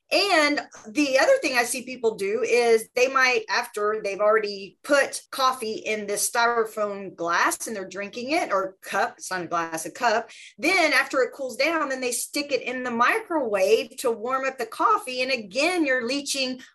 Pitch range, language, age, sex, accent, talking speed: 210-275 Hz, English, 30-49, female, American, 190 wpm